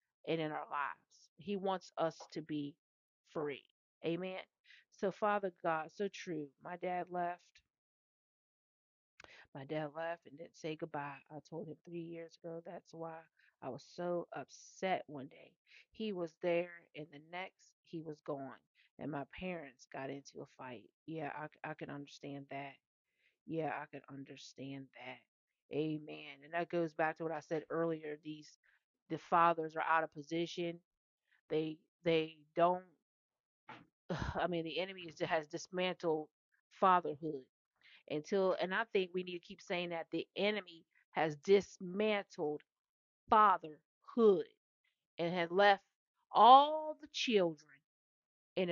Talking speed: 145 wpm